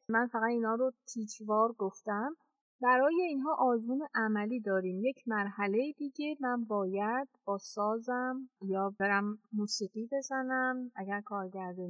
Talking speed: 120 wpm